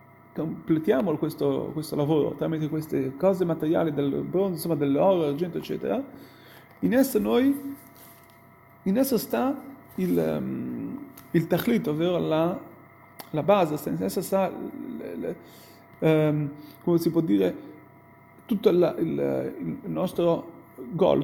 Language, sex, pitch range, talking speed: Italian, male, 150-185 Hz, 125 wpm